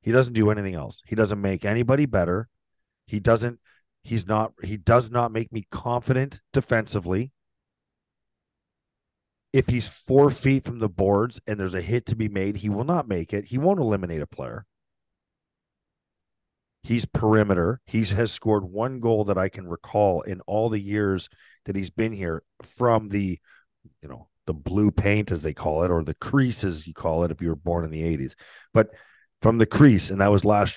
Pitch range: 95-115 Hz